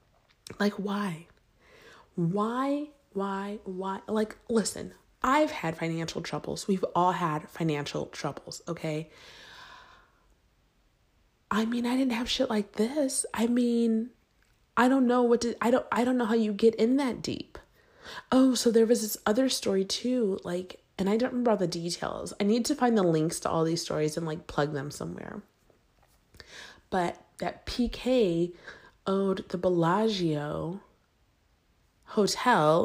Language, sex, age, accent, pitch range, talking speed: English, female, 30-49, American, 170-235 Hz, 150 wpm